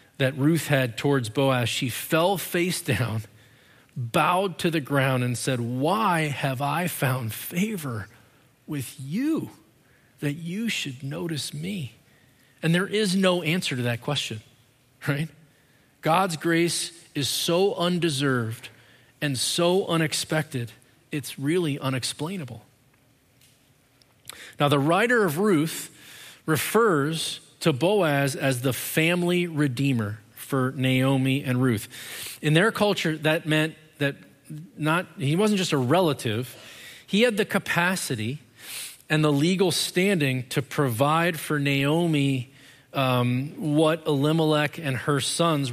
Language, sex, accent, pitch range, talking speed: English, male, American, 130-160 Hz, 120 wpm